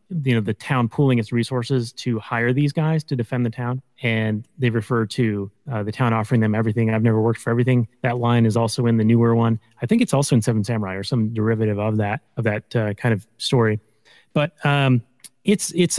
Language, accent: English, American